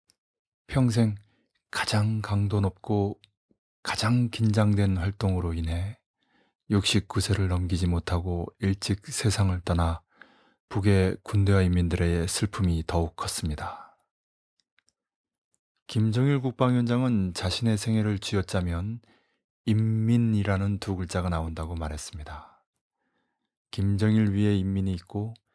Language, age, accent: Korean, 20-39, native